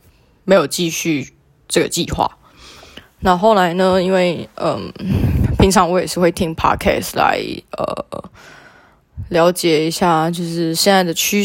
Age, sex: 20-39, female